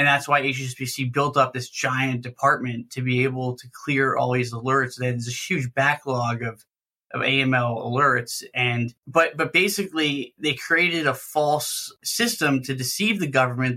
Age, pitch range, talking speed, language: 20-39, 125-140 Hz, 165 wpm, English